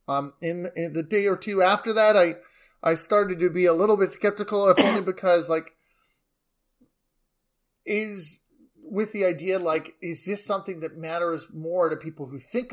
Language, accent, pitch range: English, American, 140-190 Hz